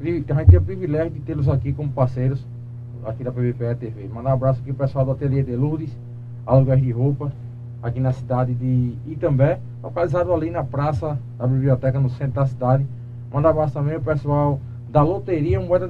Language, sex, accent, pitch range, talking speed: Portuguese, male, Brazilian, 120-160 Hz, 200 wpm